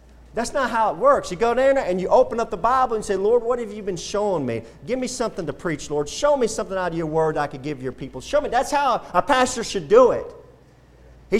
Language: English